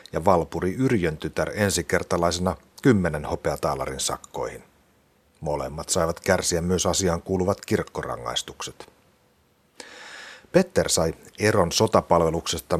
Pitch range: 85-100 Hz